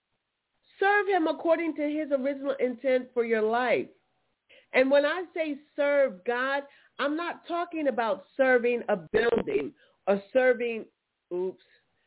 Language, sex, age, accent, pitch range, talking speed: English, female, 40-59, American, 200-270 Hz, 130 wpm